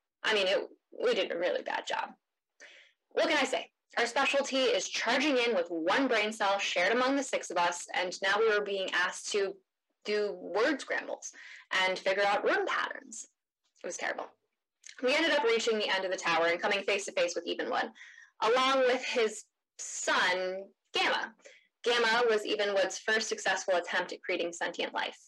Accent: American